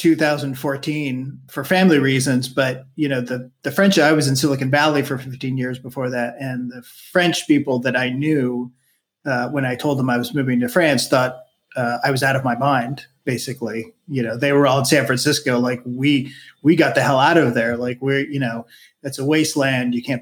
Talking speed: 215 wpm